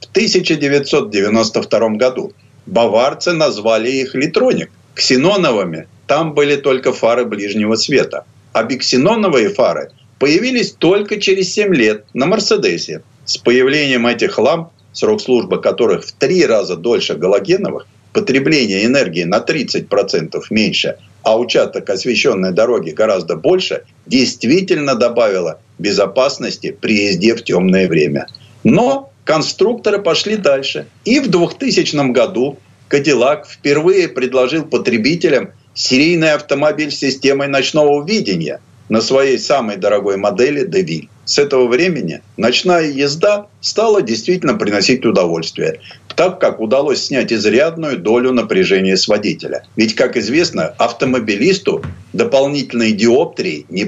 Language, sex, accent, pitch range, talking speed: Russian, male, native, 115-190 Hz, 115 wpm